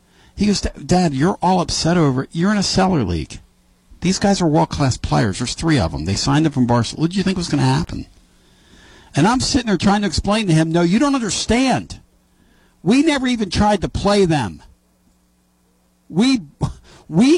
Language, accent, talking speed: English, American, 195 wpm